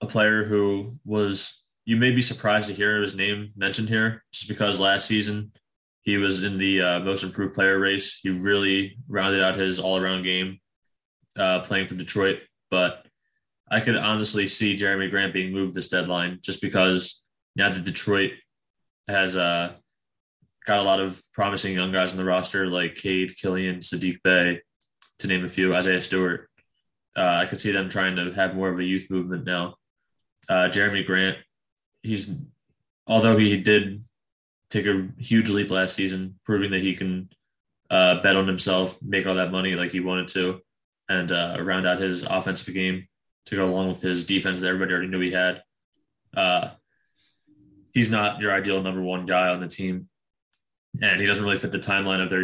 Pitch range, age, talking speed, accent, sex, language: 90-100 Hz, 20-39, 180 wpm, American, male, English